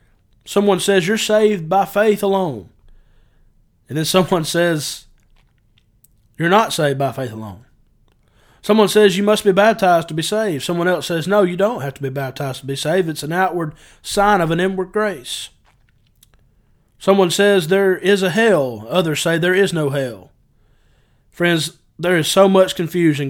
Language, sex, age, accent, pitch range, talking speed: English, male, 30-49, American, 135-190 Hz, 165 wpm